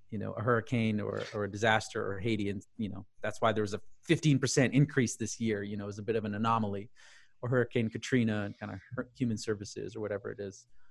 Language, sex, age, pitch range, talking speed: English, male, 30-49, 105-125 Hz, 235 wpm